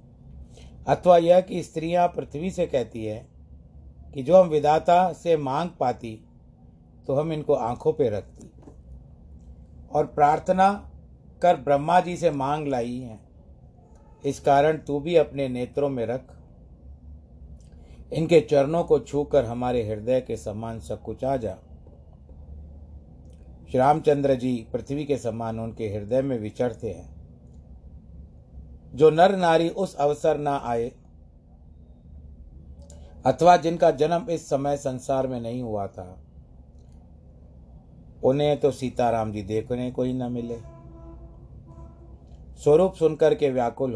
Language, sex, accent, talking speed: Hindi, male, native, 125 wpm